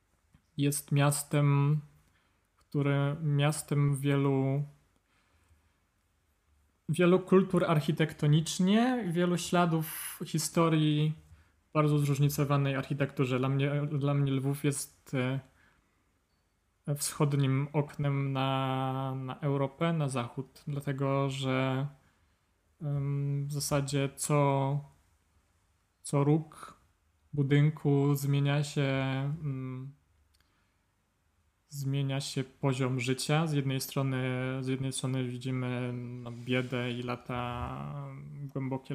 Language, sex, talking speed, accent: Polish, male, 80 wpm, native